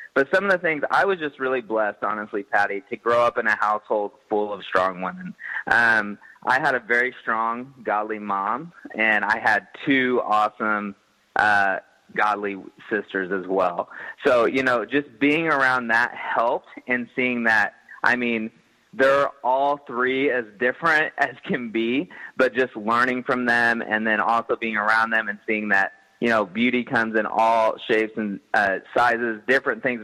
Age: 20-39